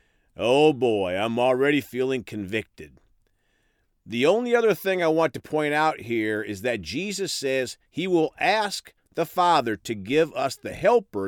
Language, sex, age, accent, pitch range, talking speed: English, male, 50-69, American, 105-155 Hz, 160 wpm